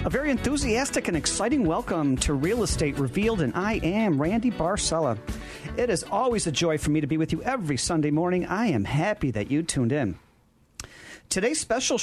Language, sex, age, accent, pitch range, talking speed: English, male, 40-59, American, 140-190 Hz, 190 wpm